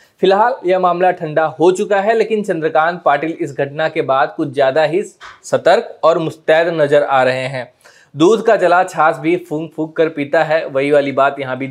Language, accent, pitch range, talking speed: Hindi, native, 145-190 Hz, 195 wpm